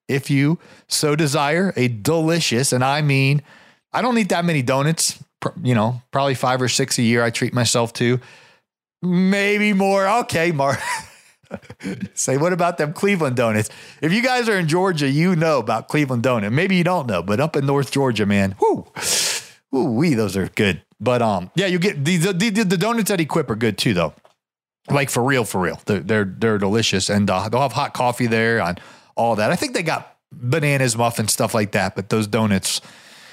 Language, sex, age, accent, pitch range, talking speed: English, male, 40-59, American, 115-170 Hz, 200 wpm